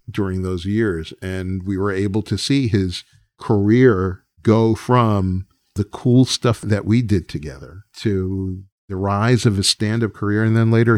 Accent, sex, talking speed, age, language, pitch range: American, male, 165 wpm, 50-69, English, 95-115 Hz